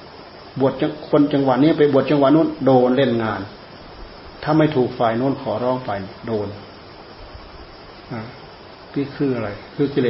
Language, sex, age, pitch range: Thai, male, 30-49, 115-140 Hz